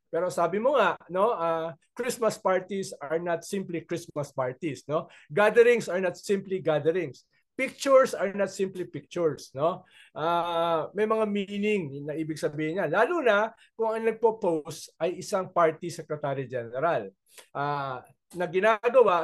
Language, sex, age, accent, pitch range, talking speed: English, male, 20-39, Filipino, 160-230 Hz, 150 wpm